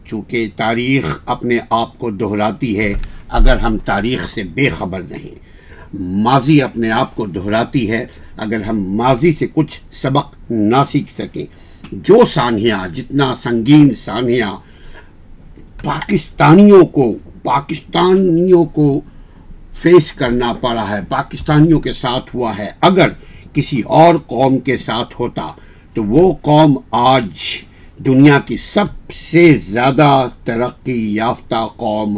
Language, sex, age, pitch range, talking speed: Urdu, male, 60-79, 110-145 Hz, 125 wpm